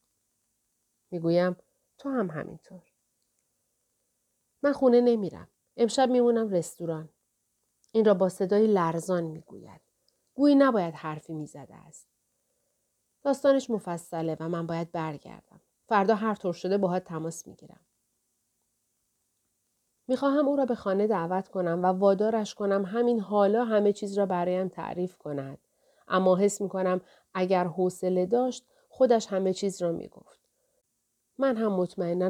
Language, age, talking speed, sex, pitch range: Persian, 40-59, 125 wpm, female, 170-225 Hz